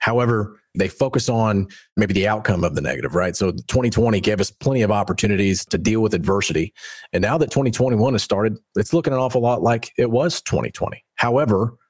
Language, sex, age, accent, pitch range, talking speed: English, male, 40-59, American, 100-120 Hz, 190 wpm